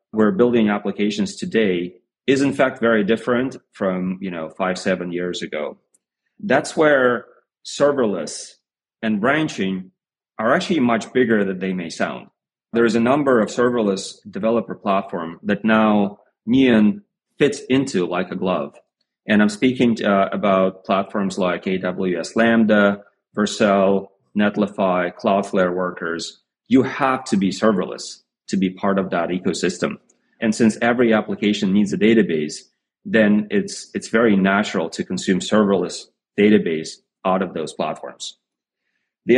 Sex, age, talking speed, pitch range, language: male, 30-49, 140 wpm, 95-115 Hz, English